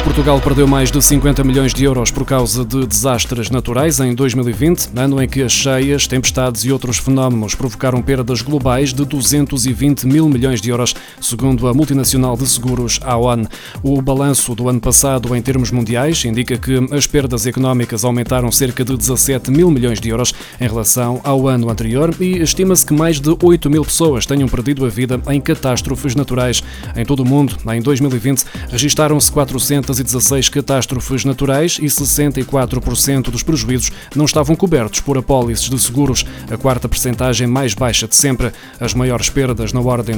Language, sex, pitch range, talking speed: Portuguese, male, 120-140 Hz, 170 wpm